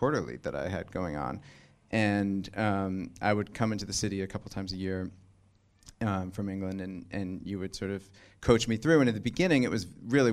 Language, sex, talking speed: English, male, 220 wpm